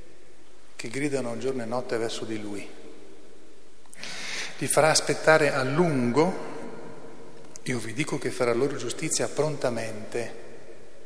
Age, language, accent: 40-59, Italian, native